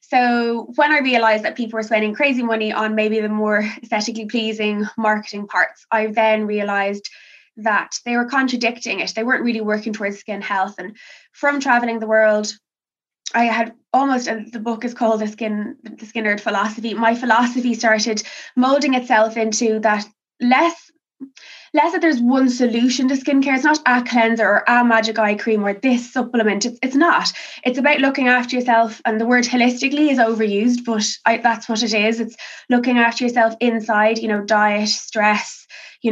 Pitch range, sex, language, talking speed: 215-245 Hz, female, English, 175 wpm